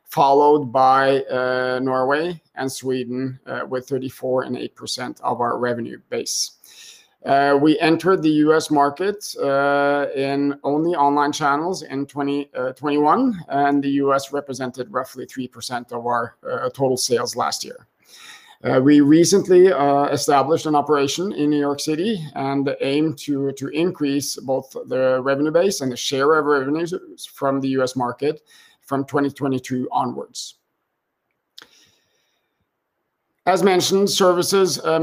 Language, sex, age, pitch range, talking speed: Danish, male, 50-69, 135-155 Hz, 135 wpm